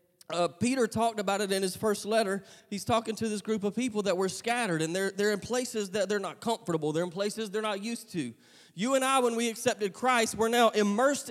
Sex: male